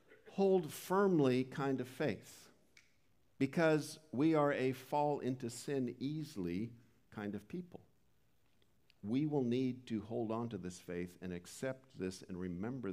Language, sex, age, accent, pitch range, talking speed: English, male, 50-69, American, 100-140 Hz, 140 wpm